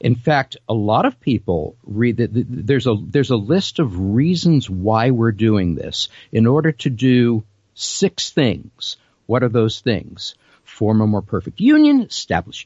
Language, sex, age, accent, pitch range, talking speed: English, male, 50-69, American, 115-160 Hz, 165 wpm